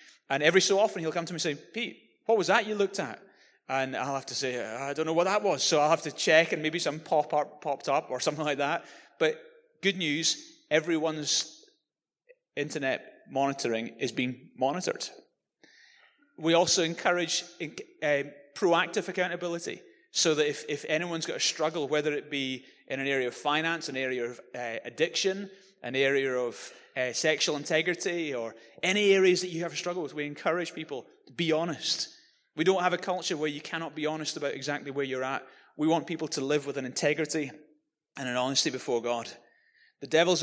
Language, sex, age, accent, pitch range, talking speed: English, male, 30-49, British, 130-170 Hz, 195 wpm